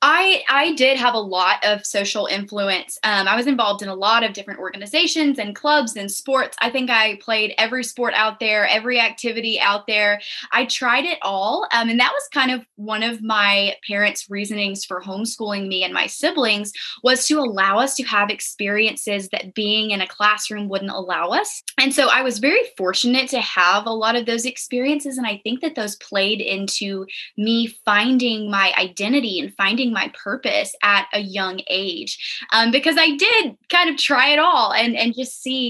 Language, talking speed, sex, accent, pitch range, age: English, 195 wpm, female, American, 205-265 Hz, 10-29